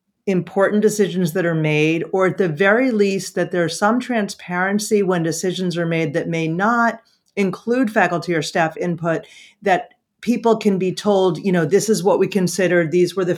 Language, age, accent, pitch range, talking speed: English, 40-59, American, 160-195 Hz, 185 wpm